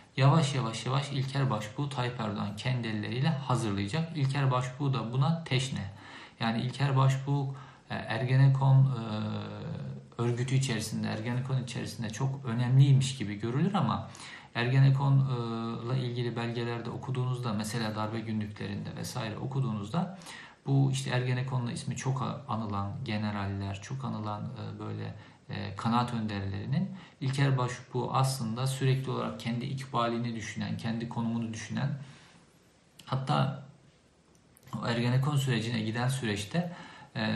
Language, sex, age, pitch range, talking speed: Turkish, male, 50-69, 110-135 Hz, 105 wpm